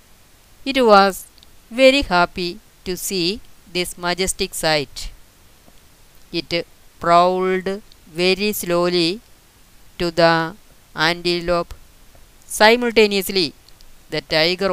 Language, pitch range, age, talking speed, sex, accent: Malayalam, 155-195 Hz, 20-39, 80 wpm, female, native